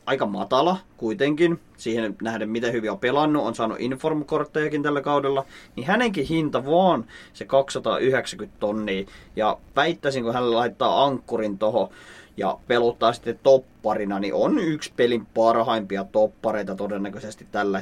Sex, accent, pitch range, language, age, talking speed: male, native, 115-170 Hz, Finnish, 30-49, 135 wpm